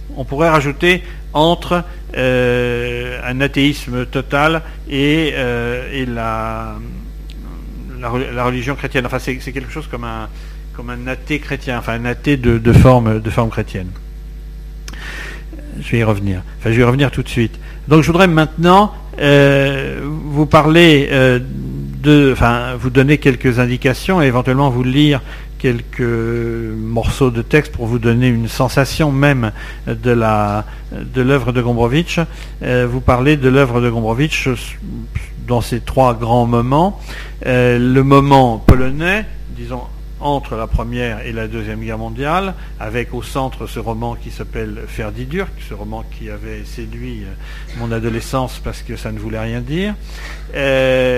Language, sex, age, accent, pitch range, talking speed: French, male, 50-69, French, 120-145 Hz, 150 wpm